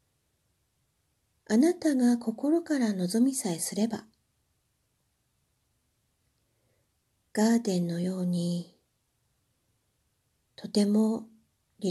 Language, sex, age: Japanese, female, 50-69